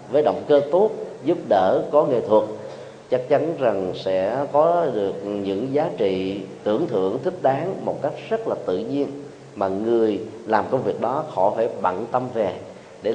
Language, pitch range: Vietnamese, 95-125 Hz